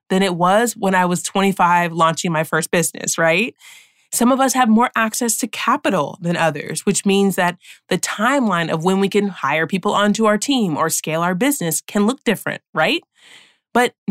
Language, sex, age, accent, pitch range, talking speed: English, female, 30-49, American, 175-235 Hz, 190 wpm